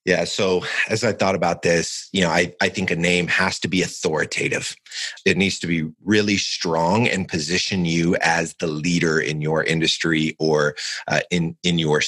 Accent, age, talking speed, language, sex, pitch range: American, 30-49, 190 wpm, English, male, 80-105 Hz